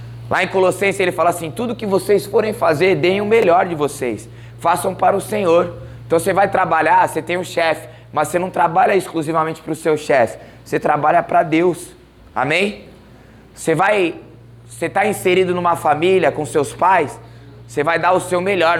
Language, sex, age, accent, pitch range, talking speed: Portuguese, male, 20-39, Brazilian, 130-180 Hz, 185 wpm